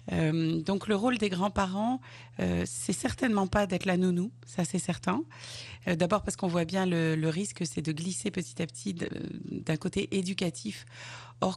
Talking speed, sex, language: 180 wpm, female, French